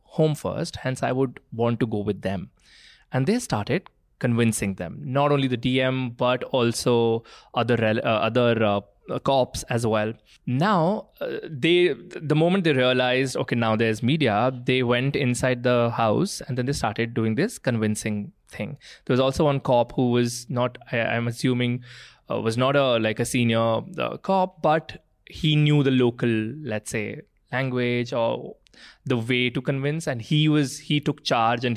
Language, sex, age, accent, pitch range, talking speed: English, male, 20-39, Indian, 115-140 Hz, 170 wpm